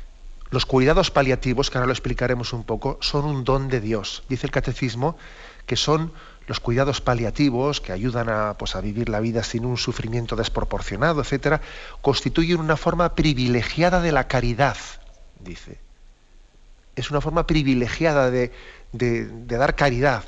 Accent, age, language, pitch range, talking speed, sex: Spanish, 40-59, Spanish, 120-145 Hz, 155 wpm, male